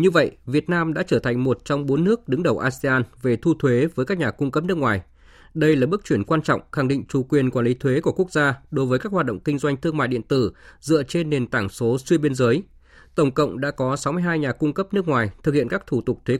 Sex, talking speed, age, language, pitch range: male, 275 wpm, 20-39, Vietnamese, 120-155 Hz